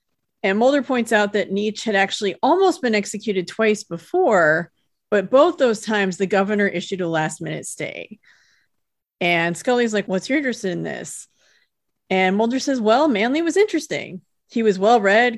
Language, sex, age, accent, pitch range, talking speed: English, female, 30-49, American, 190-245 Hz, 165 wpm